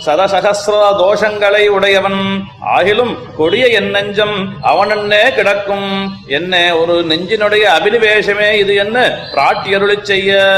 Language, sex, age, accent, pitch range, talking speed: Tamil, male, 30-49, native, 175-205 Hz, 100 wpm